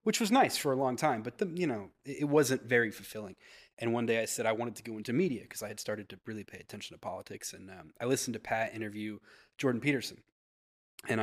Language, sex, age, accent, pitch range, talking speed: English, male, 20-39, American, 110-125 Hz, 245 wpm